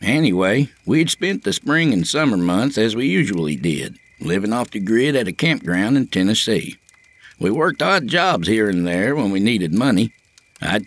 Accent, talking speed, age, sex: American, 180 wpm, 60-79, male